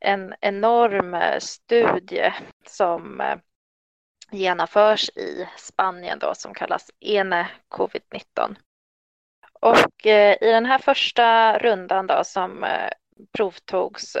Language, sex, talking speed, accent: Swedish, female, 90 wpm, native